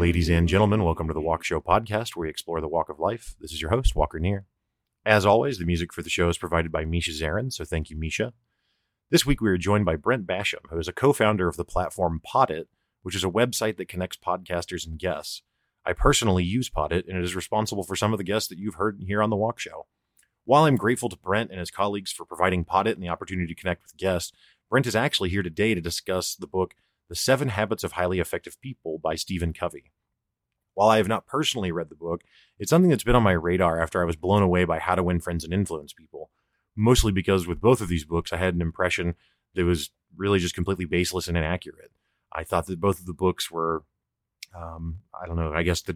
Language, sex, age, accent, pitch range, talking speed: English, male, 30-49, American, 85-105 Hz, 240 wpm